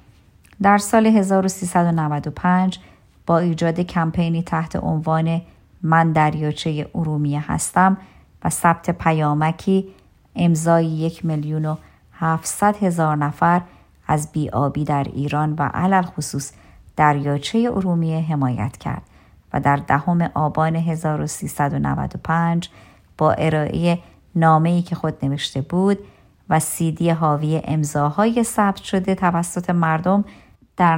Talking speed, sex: 100 wpm, male